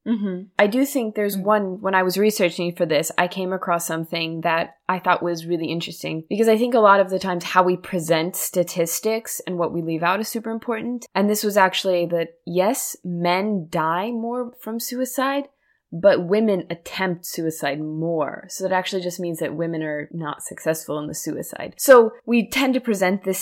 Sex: female